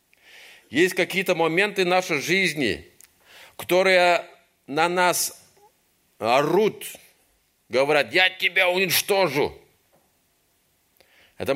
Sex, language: male, Russian